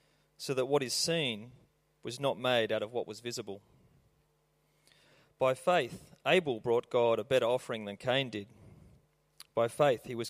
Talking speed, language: 165 wpm, English